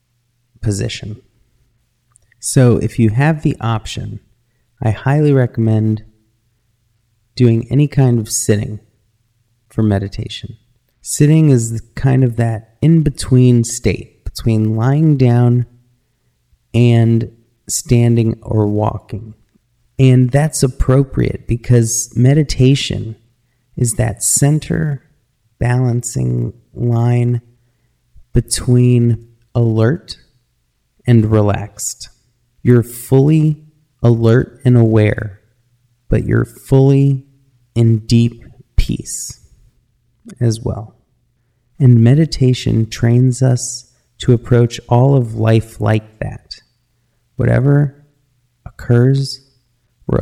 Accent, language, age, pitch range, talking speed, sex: American, English, 30-49, 115-125 Hz, 85 wpm, male